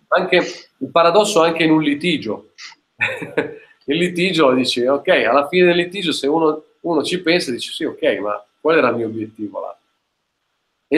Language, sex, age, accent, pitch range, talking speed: Italian, male, 40-59, native, 120-160 Hz, 170 wpm